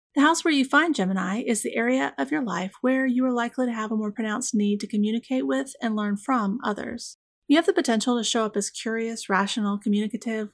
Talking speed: 230 wpm